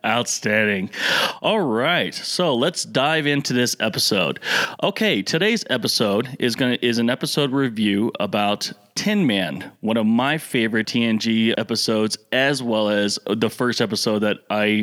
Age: 30-49